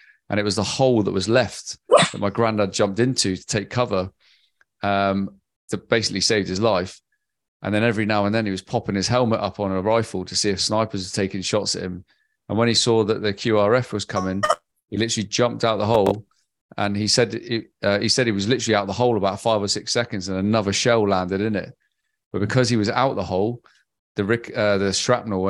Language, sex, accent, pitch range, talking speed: English, male, British, 95-115 Hz, 230 wpm